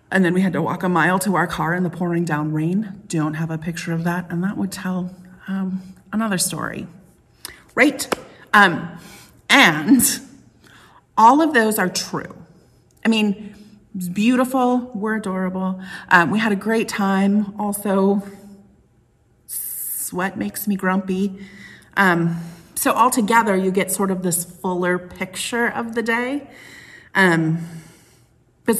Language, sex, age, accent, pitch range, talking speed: English, female, 30-49, American, 175-215 Hz, 145 wpm